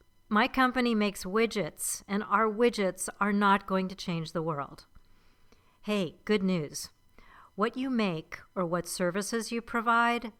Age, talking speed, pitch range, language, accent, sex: 50-69, 145 wpm, 170-220 Hz, English, American, female